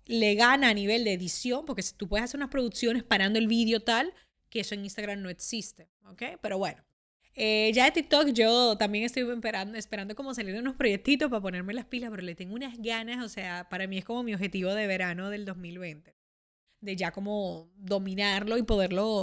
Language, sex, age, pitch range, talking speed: Spanish, female, 10-29, 195-240 Hz, 205 wpm